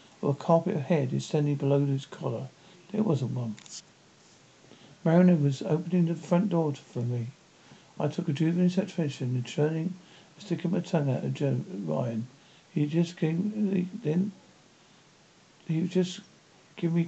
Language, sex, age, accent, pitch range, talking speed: English, male, 50-69, British, 140-185 Hz, 145 wpm